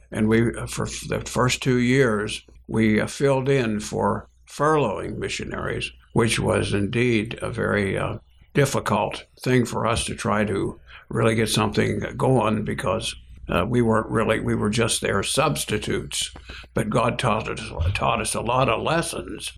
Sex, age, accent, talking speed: male, 60-79, American, 155 wpm